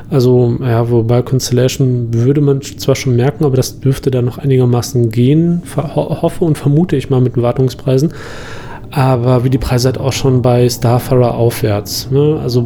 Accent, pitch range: German, 120-140 Hz